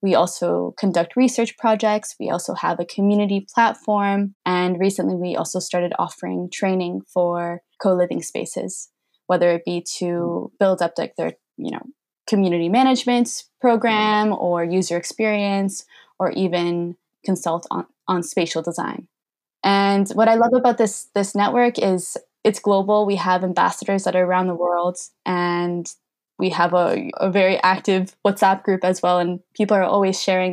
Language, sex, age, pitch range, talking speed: Polish, female, 10-29, 175-200 Hz, 155 wpm